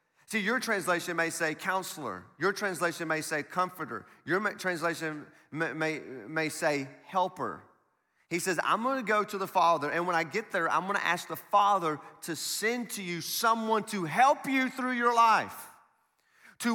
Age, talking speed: 30-49, 170 wpm